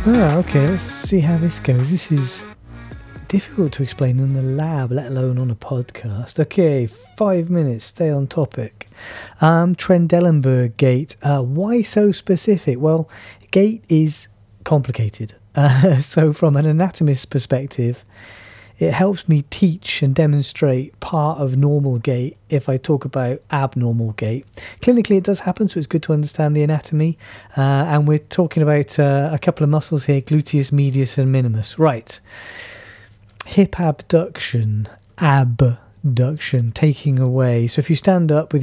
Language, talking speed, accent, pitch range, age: English, 150 wpm, British, 125-160 Hz, 30-49